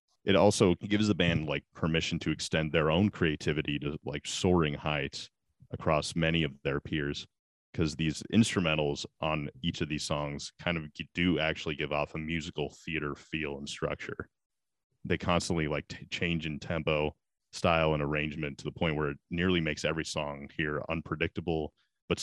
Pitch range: 75-85 Hz